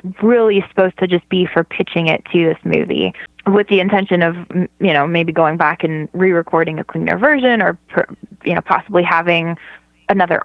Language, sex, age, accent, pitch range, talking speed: English, female, 20-39, American, 165-185 Hz, 180 wpm